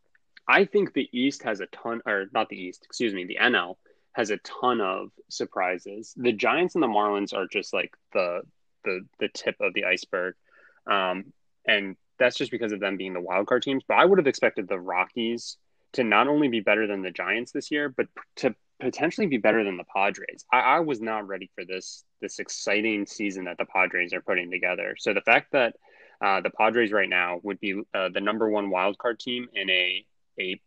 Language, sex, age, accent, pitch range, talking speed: English, male, 20-39, American, 95-115 Hz, 210 wpm